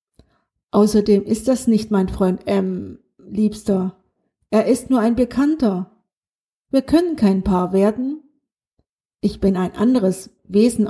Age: 50-69